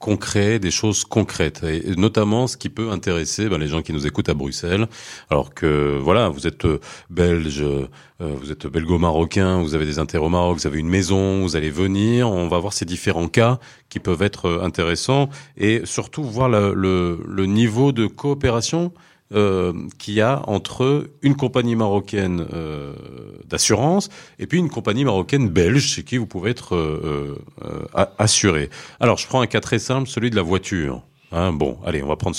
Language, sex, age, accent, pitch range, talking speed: French, male, 40-59, French, 80-110 Hz, 185 wpm